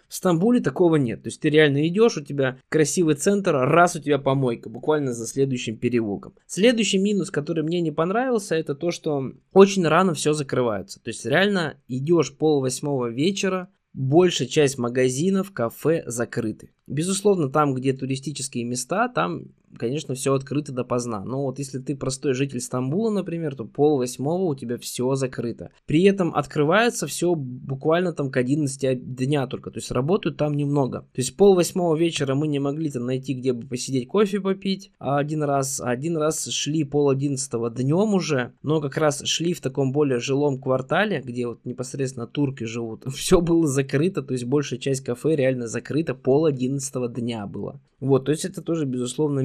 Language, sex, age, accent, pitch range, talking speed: Russian, male, 20-39, native, 125-160 Hz, 175 wpm